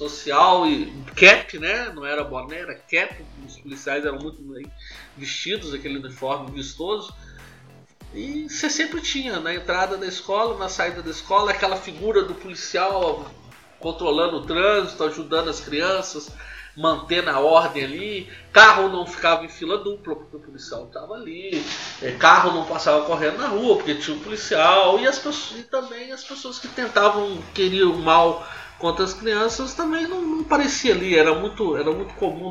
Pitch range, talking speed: 160-265 Hz, 165 wpm